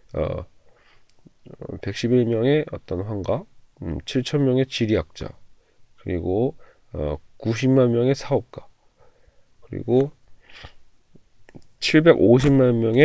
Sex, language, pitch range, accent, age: male, Korean, 110-140 Hz, native, 40-59